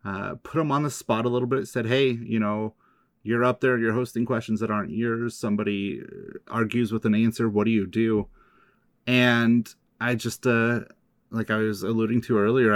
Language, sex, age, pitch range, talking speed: English, male, 30-49, 105-115 Hz, 195 wpm